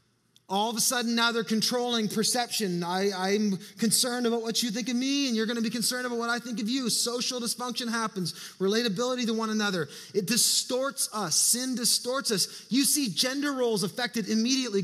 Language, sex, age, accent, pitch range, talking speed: English, male, 20-39, American, 210-245 Hz, 190 wpm